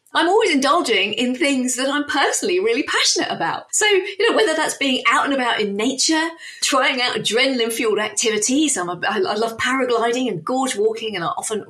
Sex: female